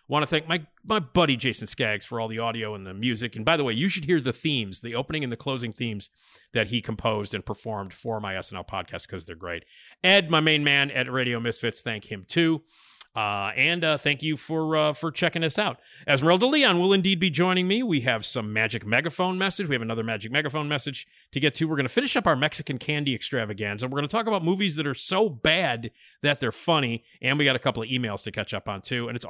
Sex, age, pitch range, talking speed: male, 40-59, 110-165 Hz, 250 wpm